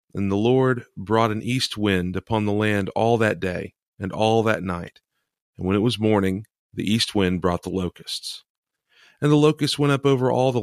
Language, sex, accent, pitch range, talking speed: English, male, American, 95-115 Hz, 205 wpm